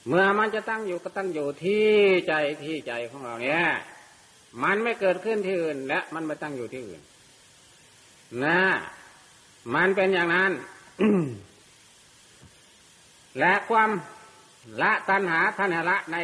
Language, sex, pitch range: Thai, male, 165-200 Hz